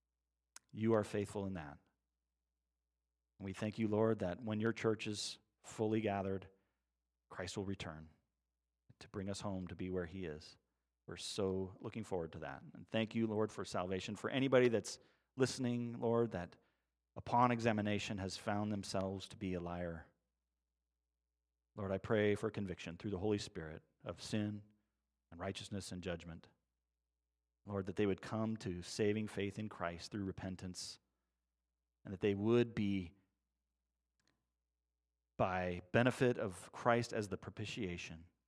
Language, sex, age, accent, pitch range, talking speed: English, male, 40-59, American, 75-110 Hz, 145 wpm